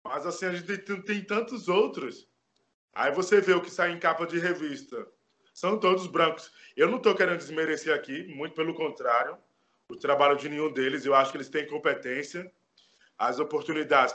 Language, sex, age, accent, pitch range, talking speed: Portuguese, male, 20-39, Brazilian, 145-185 Hz, 180 wpm